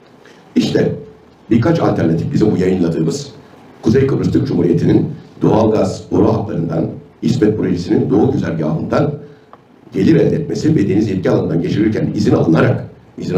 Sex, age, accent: male, 60-79, native